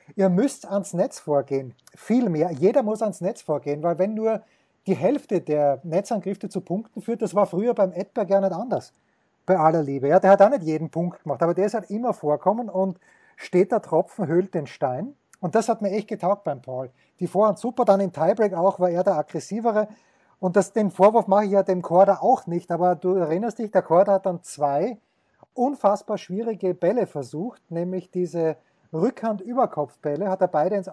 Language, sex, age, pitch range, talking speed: German, male, 30-49, 170-205 Hz, 205 wpm